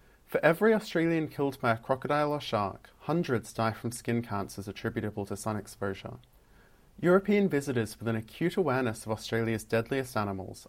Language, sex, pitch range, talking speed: English, male, 105-140 Hz, 155 wpm